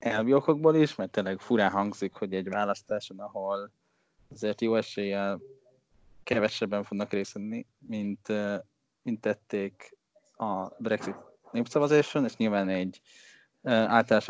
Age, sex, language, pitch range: 10-29, male, Hungarian, 95-115 Hz